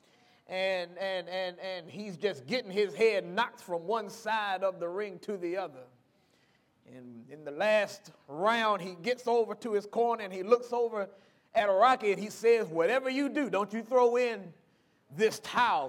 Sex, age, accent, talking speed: male, 30-49, American, 180 wpm